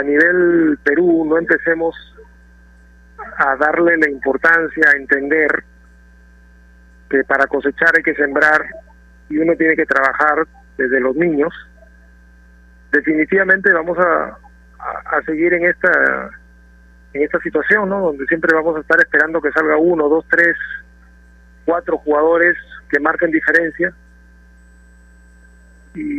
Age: 40-59